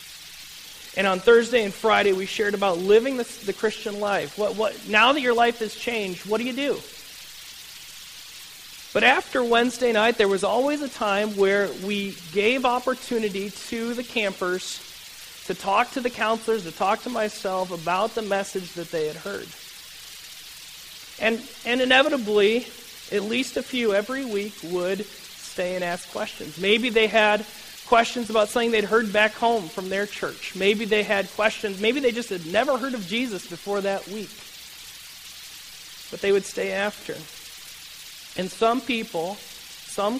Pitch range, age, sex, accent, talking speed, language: 195-235 Hz, 40-59, male, American, 160 wpm, English